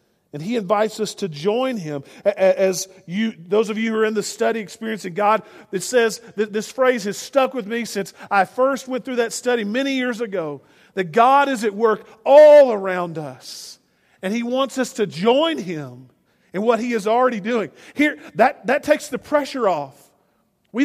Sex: male